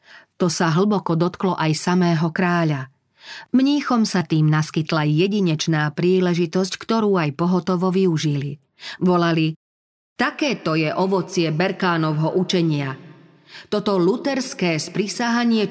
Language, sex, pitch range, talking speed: Slovak, female, 160-200 Hz, 105 wpm